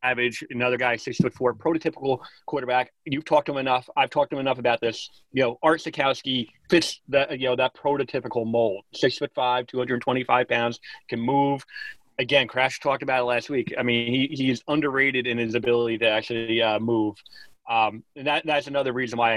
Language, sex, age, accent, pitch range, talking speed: English, male, 30-49, American, 120-145 Hz, 200 wpm